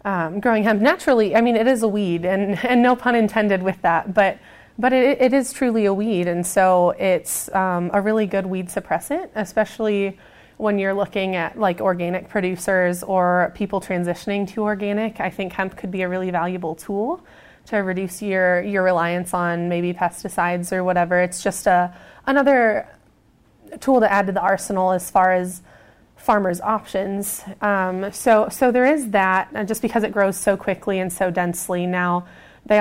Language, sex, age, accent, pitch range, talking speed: English, female, 20-39, American, 185-215 Hz, 180 wpm